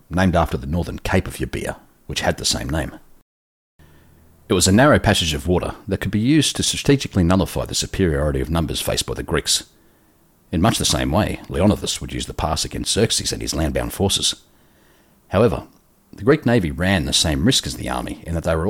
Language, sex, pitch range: English, male, 75-95 Hz